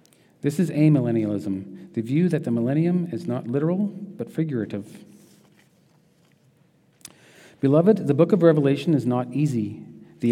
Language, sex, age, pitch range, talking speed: English, male, 40-59, 120-160 Hz, 130 wpm